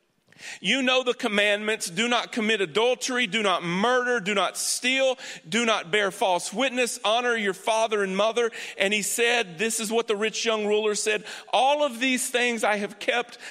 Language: English